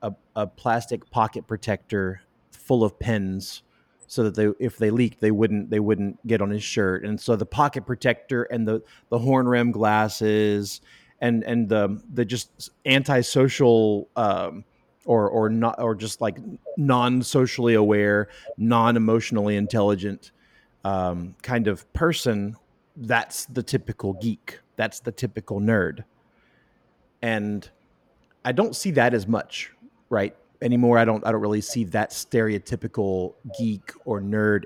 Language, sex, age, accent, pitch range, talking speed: English, male, 30-49, American, 105-120 Hz, 140 wpm